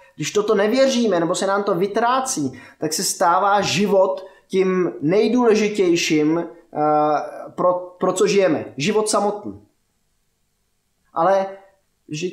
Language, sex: Czech, male